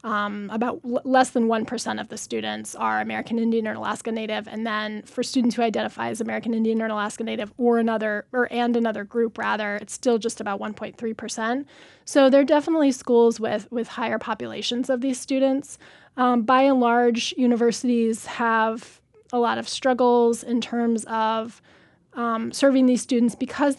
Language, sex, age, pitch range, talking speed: English, female, 10-29, 220-245 Hz, 170 wpm